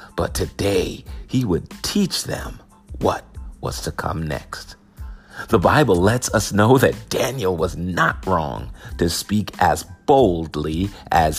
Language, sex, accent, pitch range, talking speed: English, male, American, 85-125 Hz, 135 wpm